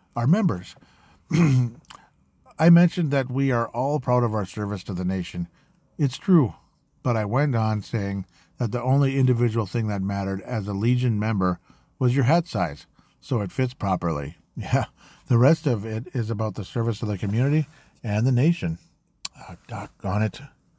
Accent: American